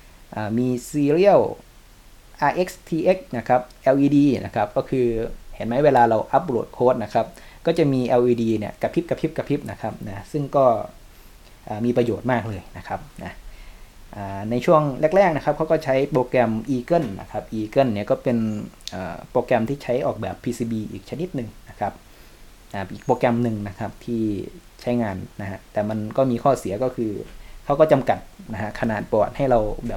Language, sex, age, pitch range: Thai, male, 20-39, 105-130 Hz